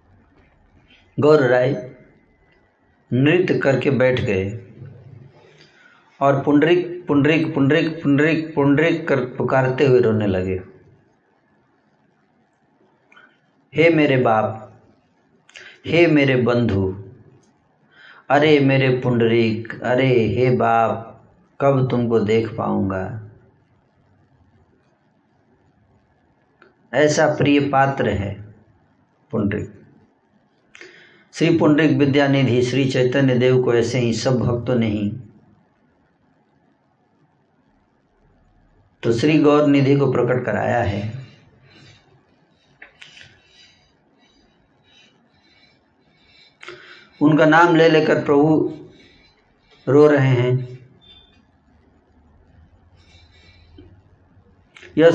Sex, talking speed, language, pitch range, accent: male, 75 wpm, Hindi, 105-145 Hz, native